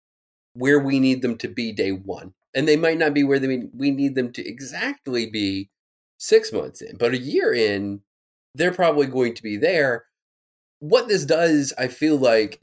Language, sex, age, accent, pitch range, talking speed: English, male, 30-49, American, 100-140 Hz, 195 wpm